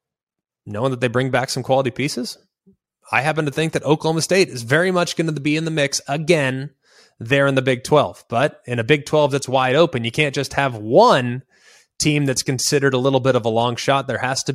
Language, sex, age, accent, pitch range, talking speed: English, male, 20-39, American, 130-150 Hz, 230 wpm